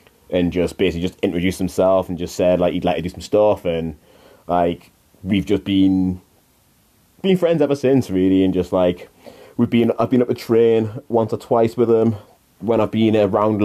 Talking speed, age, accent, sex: 200 wpm, 20-39, British, male